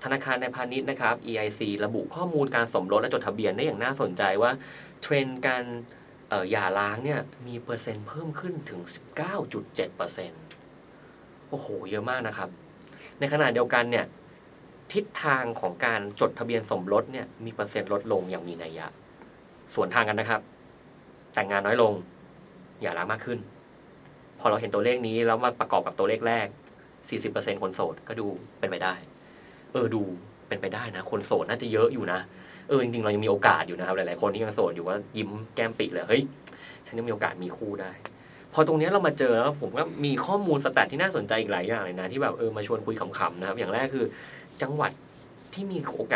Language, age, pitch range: Thai, 20-39, 105-135 Hz